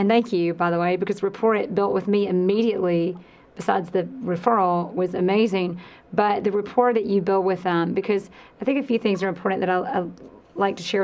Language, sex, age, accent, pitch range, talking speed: English, female, 30-49, American, 185-210 Hz, 220 wpm